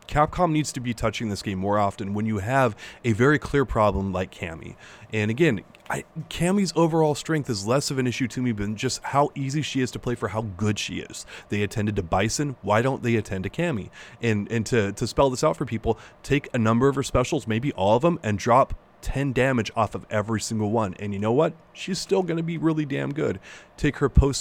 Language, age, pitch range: English, 30-49, 110-145 Hz